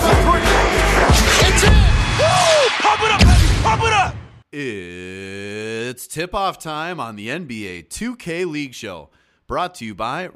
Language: English